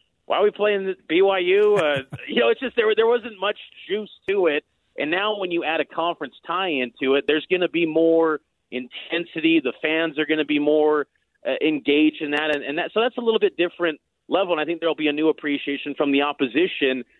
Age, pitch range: 40-59, 145-200 Hz